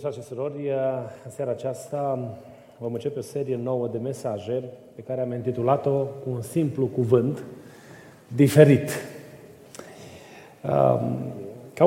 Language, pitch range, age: Romanian, 125-165 Hz, 30-49